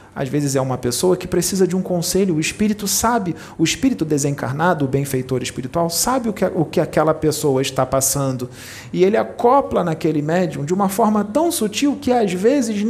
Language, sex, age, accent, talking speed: Portuguese, male, 40-59, Brazilian, 185 wpm